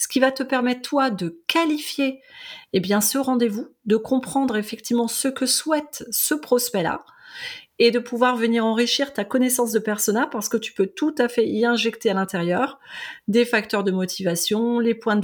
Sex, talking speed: female, 175 wpm